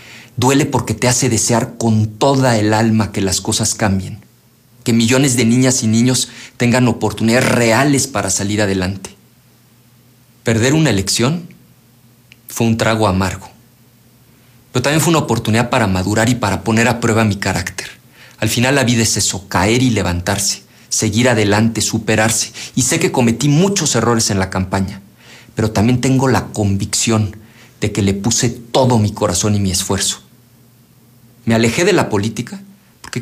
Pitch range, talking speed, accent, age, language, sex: 105-125 Hz, 160 wpm, Mexican, 40-59, Spanish, male